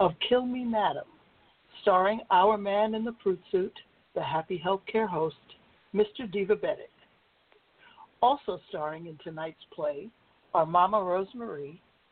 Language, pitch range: English, 165-225 Hz